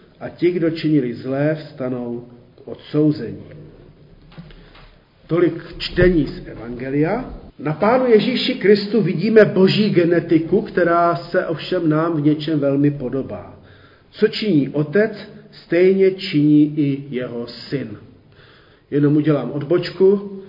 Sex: male